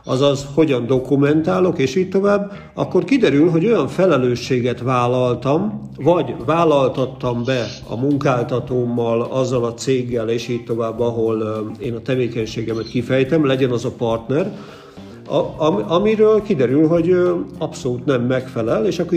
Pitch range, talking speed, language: 125-155 Hz, 125 wpm, English